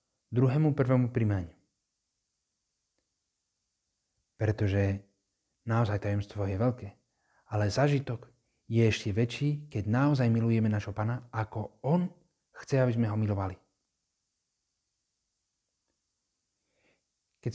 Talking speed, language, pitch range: 90 wpm, Czech, 105-130 Hz